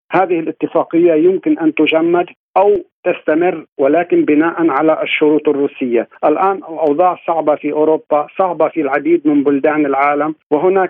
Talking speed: 130 wpm